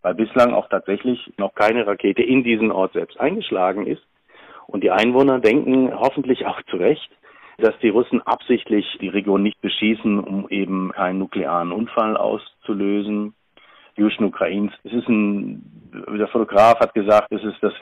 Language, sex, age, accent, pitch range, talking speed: German, male, 50-69, German, 95-110 Hz, 155 wpm